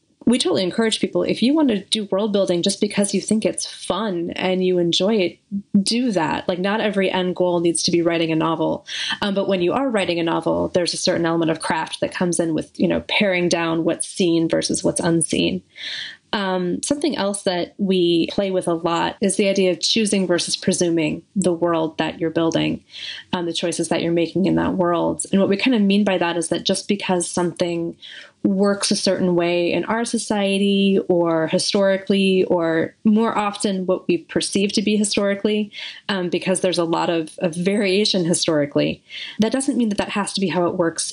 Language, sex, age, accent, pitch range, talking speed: English, female, 20-39, American, 170-210 Hz, 205 wpm